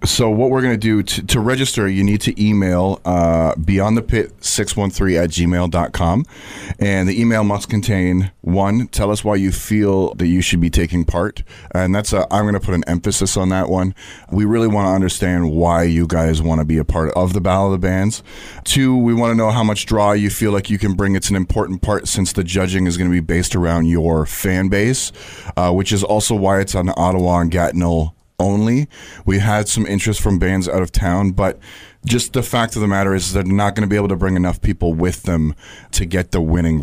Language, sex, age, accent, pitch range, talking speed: English, male, 30-49, American, 85-105 Hz, 230 wpm